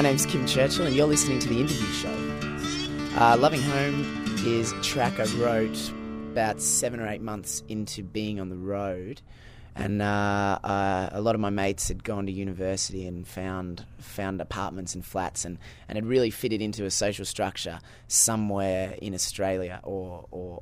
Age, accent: 20-39, Australian